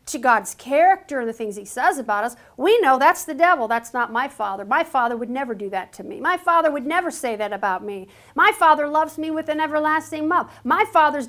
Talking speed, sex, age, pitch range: 240 wpm, female, 50-69, 250-335 Hz